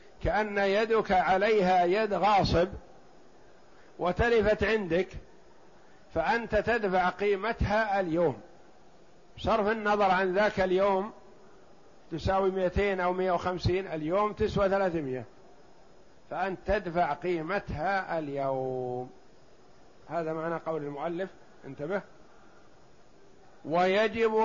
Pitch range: 175-215 Hz